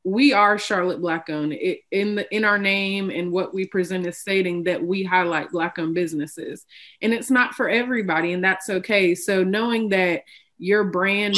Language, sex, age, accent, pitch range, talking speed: English, female, 20-39, American, 180-205 Hz, 180 wpm